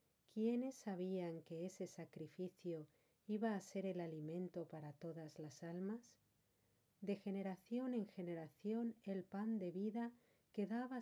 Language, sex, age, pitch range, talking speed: Spanish, female, 50-69, 170-220 Hz, 125 wpm